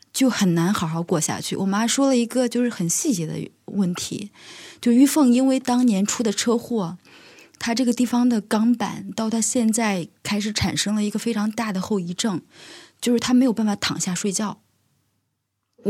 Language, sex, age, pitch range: Chinese, female, 20-39, 185-240 Hz